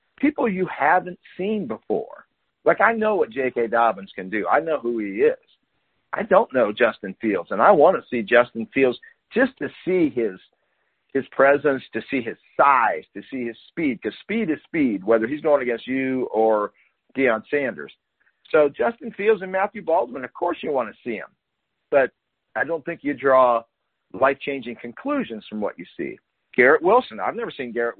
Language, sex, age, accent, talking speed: English, male, 50-69, American, 185 wpm